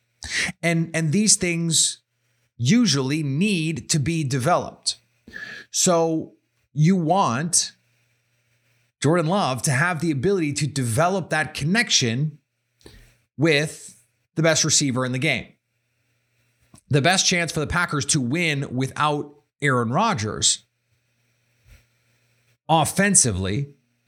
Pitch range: 120-160 Hz